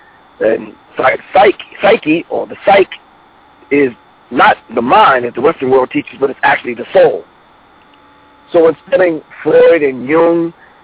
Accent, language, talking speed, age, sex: American, English, 145 wpm, 50-69, male